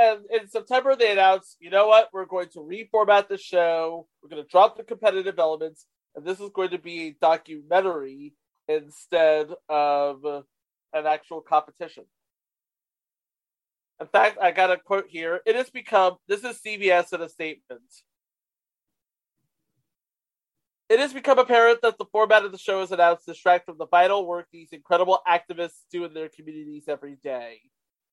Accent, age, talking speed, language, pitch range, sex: American, 30-49, 160 wpm, English, 155-205 Hz, male